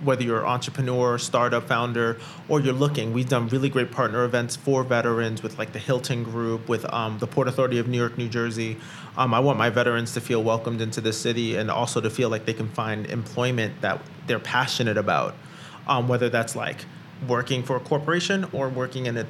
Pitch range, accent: 120-140 Hz, American